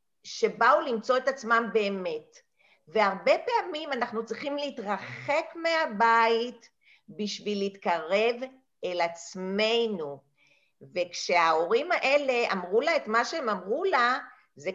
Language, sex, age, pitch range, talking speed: Hebrew, female, 50-69, 195-275 Hz, 100 wpm